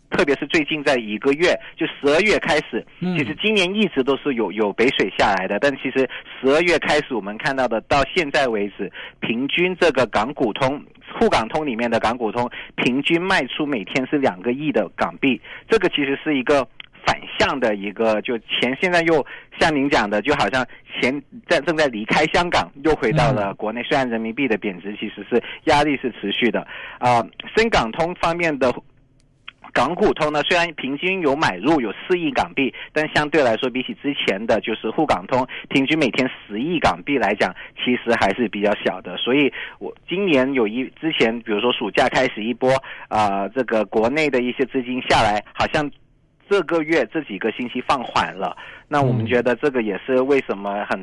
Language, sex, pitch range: Chinese, male, 115-155 Hz